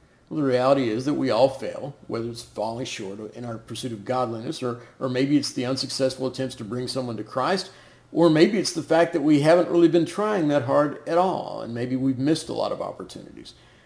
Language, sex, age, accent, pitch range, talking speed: English, male, 50-69, American, 125-160 Hz, 225 wpm